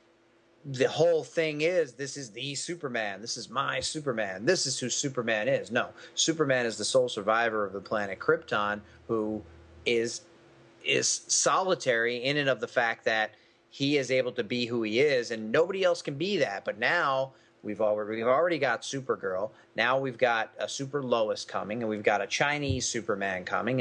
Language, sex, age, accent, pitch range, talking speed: English, male, 30-49, American, 110-145 Hz, 185 wpm